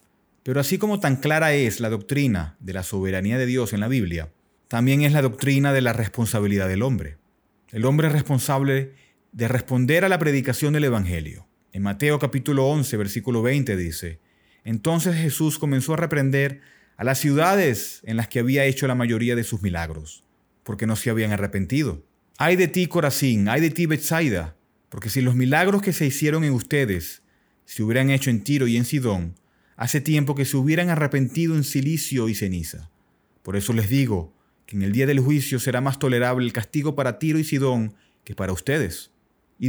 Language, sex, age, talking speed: Spanish, male, 30-49, 185 wpm